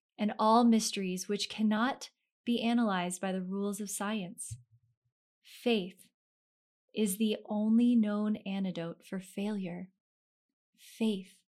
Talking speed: 110 wpm